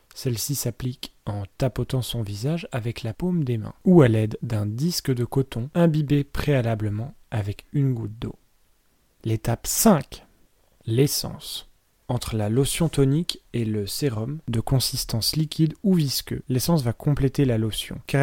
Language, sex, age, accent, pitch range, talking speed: French, male, 30-49, French, 115-145 Hz, 150 wpm